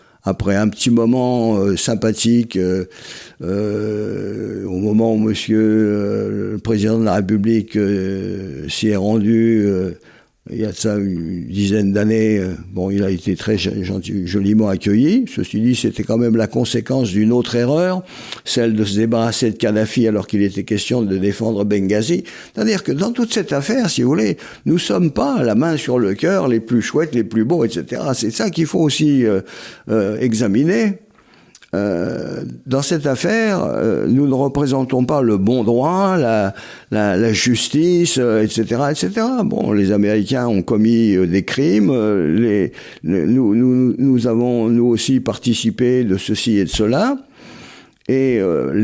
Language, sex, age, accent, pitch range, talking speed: French, male, 60-79, French, 105-140 Hz, 170 wpm